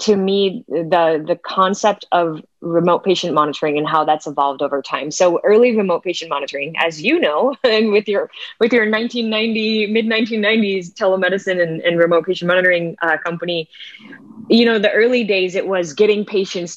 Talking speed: 180 wpm